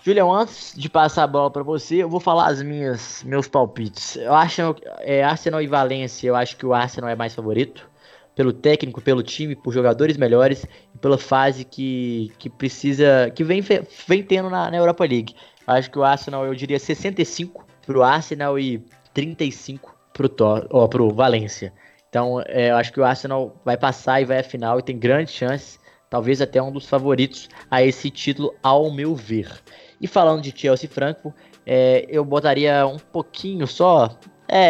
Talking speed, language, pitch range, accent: 185 wpm, Portuguese, 125-150 Hz, Brazilian